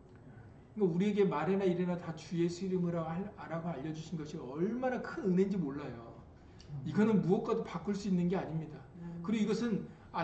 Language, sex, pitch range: Korean, male, 145-205 Hz